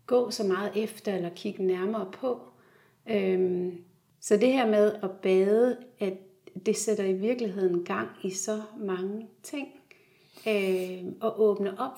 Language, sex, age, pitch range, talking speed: Danish, female, 30-49, 185-215 Hz, 135 wpm